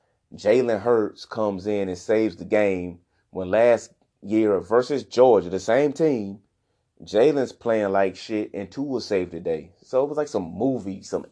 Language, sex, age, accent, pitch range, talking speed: English, male, 30-49, American, 95-115 Hz, 170 wpm